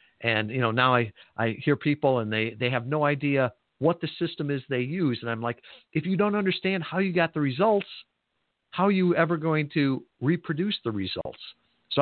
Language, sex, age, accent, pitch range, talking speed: English, male, 50-69, American, 115-160 Hz, 210 wpm